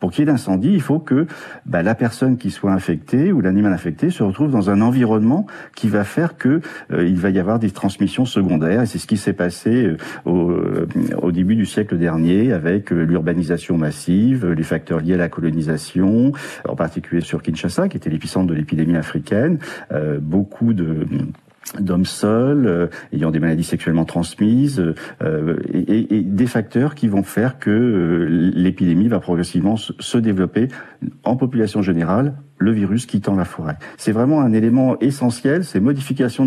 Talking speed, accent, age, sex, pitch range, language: 175 wpm, French, 50-69, male, 90-125 Hz, French